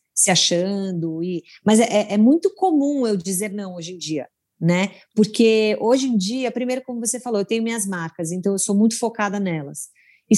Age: 30-49